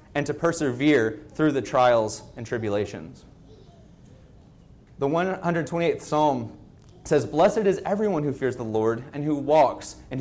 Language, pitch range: English, 120-160 Hz